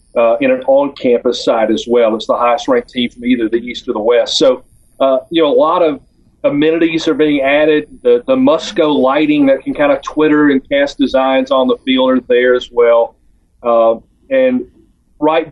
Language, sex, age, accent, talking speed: English, male, 40-59, American, 200 wpm